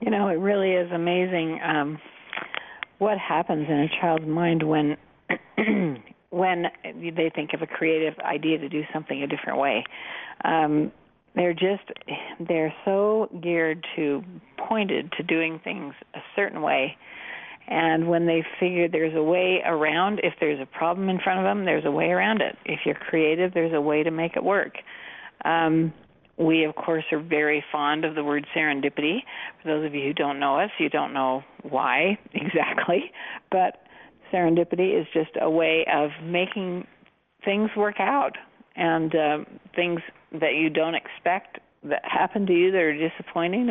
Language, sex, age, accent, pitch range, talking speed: English, female, 50-69, American, 155-180 Hz, 165 wpm